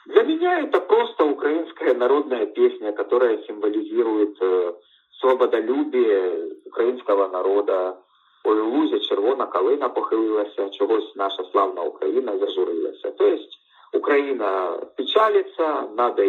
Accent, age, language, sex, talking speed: native, 50-69, Russian, male, 100 wpm